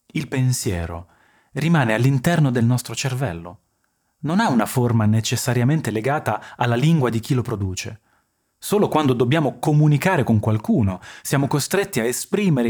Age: 30-49